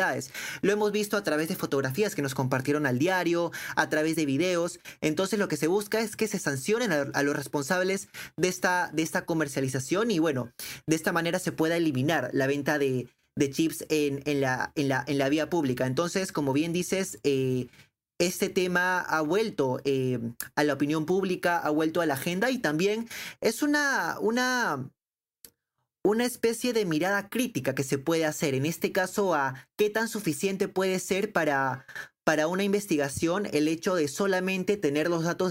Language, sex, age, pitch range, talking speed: Spanish, male, 20-39, 145-185 Hz, 175 wpm